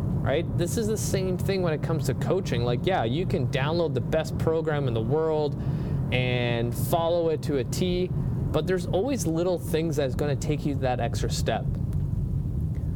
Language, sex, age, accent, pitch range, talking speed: English, male, 20-39, American, 120-155 Hz, 185 wpm